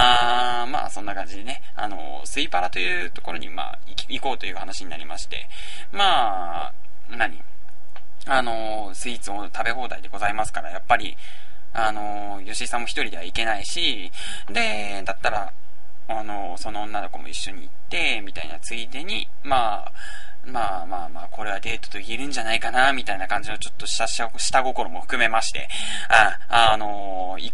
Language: Japanese